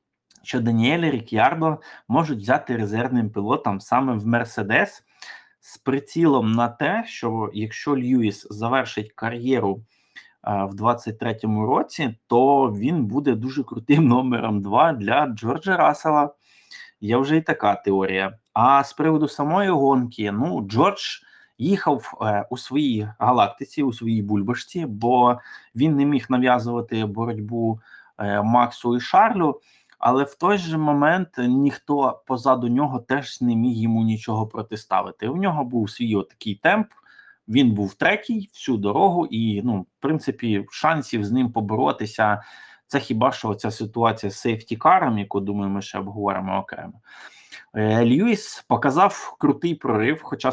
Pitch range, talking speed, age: 105-140 Hz, 135 wpm, 20-39